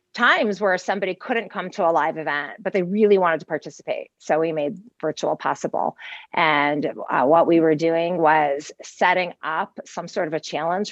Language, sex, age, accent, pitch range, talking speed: English, female, 30-49, American, 165-210 Hz, 185 wpm